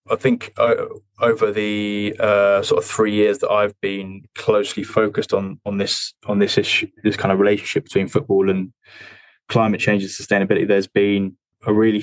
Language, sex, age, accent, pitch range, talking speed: English, male, 20-39, British, 100-115 Hz, 175 wpm